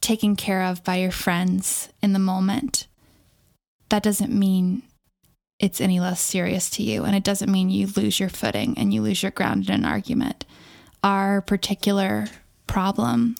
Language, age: English, 20-39